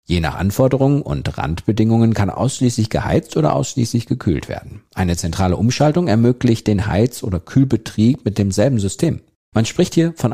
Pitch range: 85-120 Hz